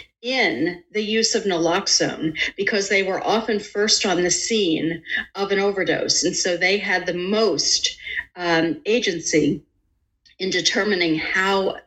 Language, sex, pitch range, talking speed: English, female, 165-215 Hz, 135 wpm